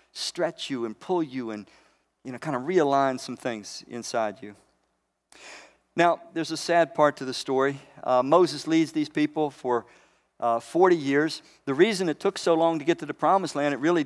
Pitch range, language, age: 135-170 Hz, English, 50-69